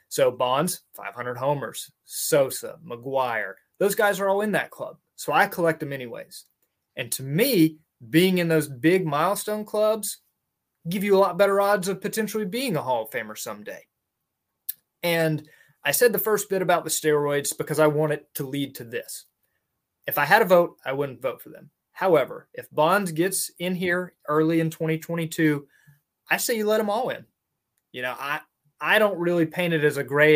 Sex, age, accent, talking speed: male, 20-39, American, 190 wpm